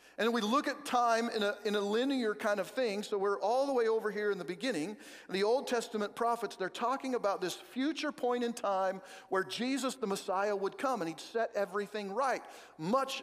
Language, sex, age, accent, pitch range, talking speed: English, male, 50-69, American, 200-260 Hz, 215 wpm